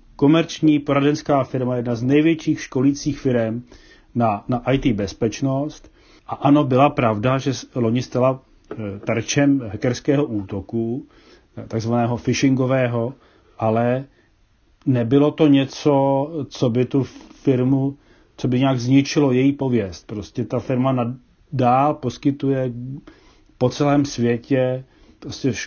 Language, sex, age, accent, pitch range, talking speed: Czech, male, 40-59, native, 120-145 Hz, 110 wpm